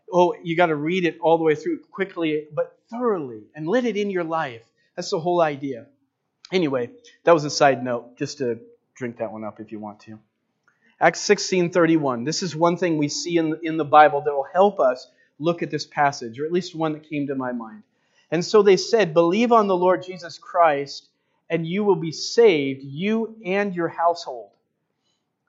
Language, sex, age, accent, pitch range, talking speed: English, male, 30-49, American, 150-190 Hz, 205 wpm